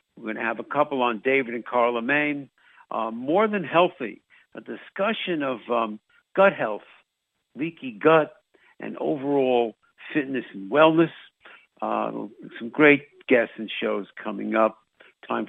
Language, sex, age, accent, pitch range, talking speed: English, male, 60-79, American, 115-145 Hz, 140 wpm